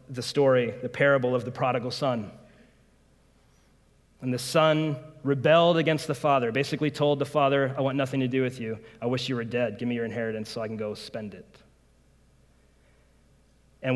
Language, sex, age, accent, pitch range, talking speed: English, male, 30-49, American, 125-155 Hz, 180 wpm